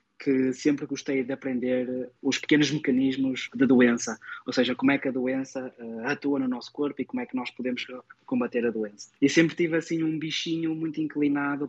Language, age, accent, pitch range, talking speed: Portuguese, 20-39, Portuguese, 125-145 Hz, 200 wpm